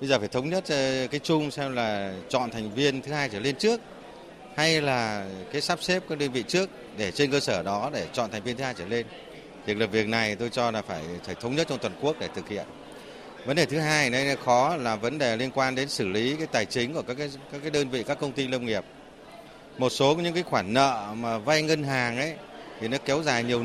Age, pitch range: 30-49, 120-150 Hz